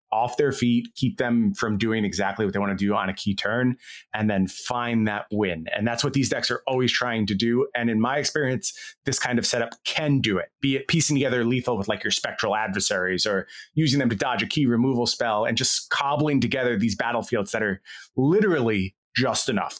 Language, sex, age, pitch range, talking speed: English, male, 30-49, 105-140 Hz, 220 wpm